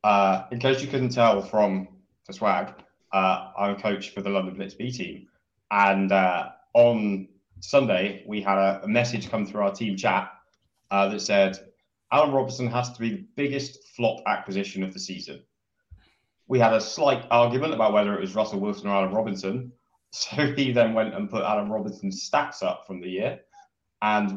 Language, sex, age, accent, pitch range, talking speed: English, male, 20-39, British, 100-140 Hz, 185 wpm